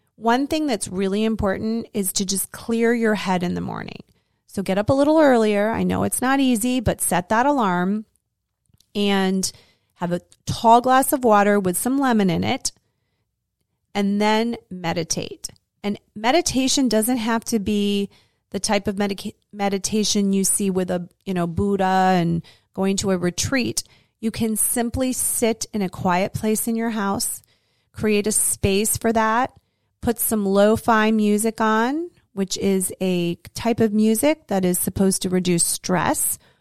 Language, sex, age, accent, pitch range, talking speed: English, female, 30-49, American, 185-230 Hz, 165 wpm